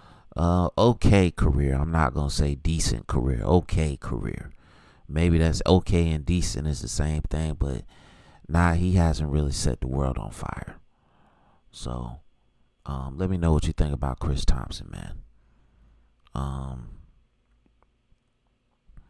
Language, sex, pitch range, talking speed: English, male, 70-80 Hz, 135 wpm